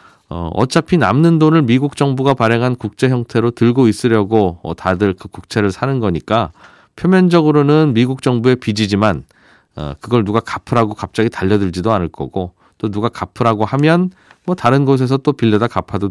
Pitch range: 100-135 Hz